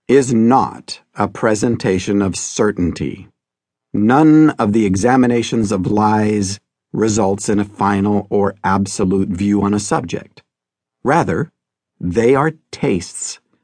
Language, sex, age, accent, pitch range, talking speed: English, male, 50-69, American, 85-115 Hz, 115 wpm